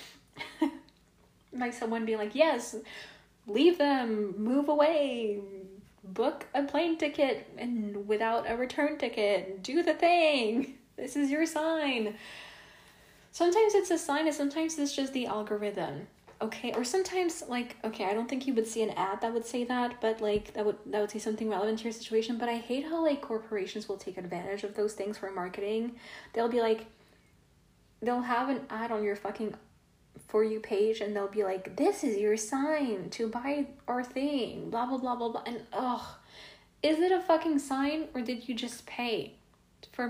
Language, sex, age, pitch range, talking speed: English, female, 10-29, 215-275 Hz, 180 wpm